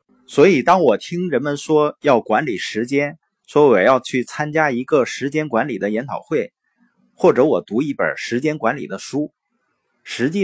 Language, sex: Chinese, male